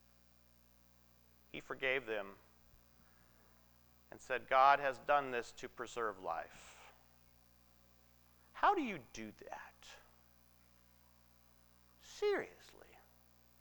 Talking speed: 80 wpm